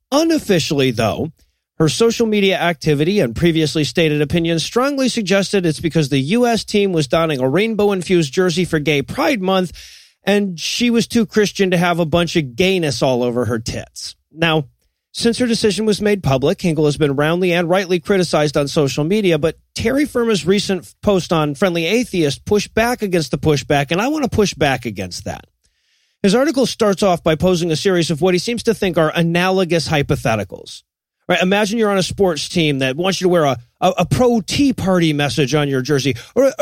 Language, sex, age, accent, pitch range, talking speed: English, male, 40-59, American, 155-220 Hz, 195 wpm